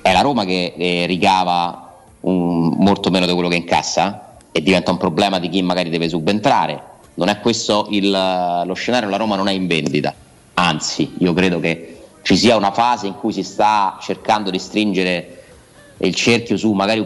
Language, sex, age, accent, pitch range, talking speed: Italian, male, 30-49, native, 90-120 Hz, 190 wpm